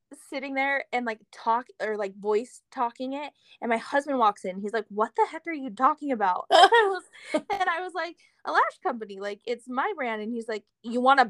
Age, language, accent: 20-39, English, American